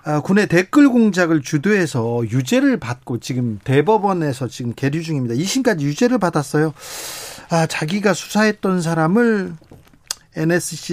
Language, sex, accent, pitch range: Korean, male, native, 140-185 Hz